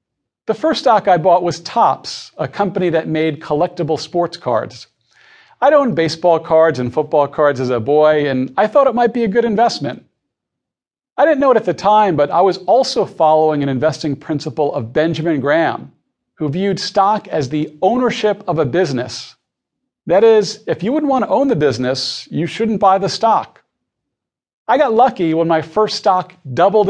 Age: 40-59